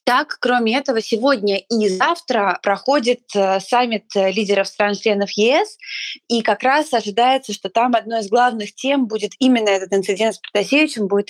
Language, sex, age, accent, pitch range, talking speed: Russian, female, 20-39, native, 205-255 Hz, 150 wpm